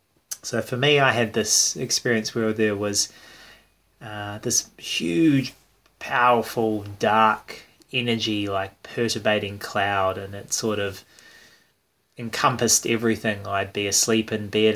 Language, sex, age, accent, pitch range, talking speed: English, male, 20-39, Australian, 100-115 Hz, 120 wpm